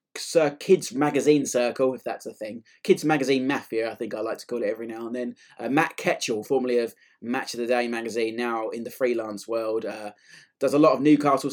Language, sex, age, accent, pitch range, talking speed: English, male, 20-39, British, 115-135 Hz, 225 wpm